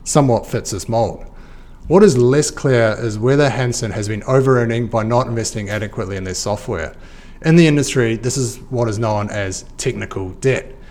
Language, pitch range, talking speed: English, 110-130 Hz, 175 wpm